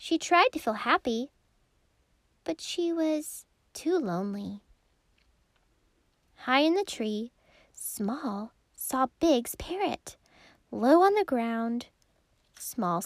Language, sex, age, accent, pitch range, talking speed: English, female, 10-29, American, 215-305 Hz, 105 wpm